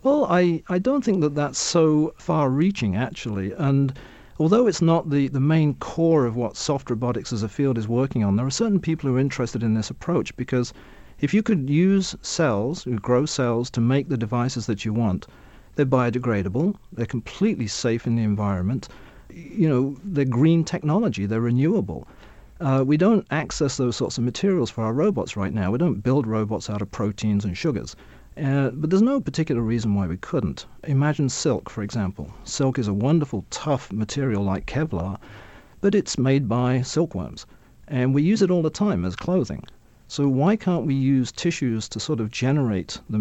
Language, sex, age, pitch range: English, male, 40-59, 115-160 Hz